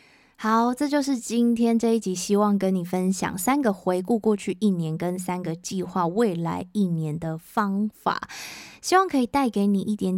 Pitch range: 175-215 Hz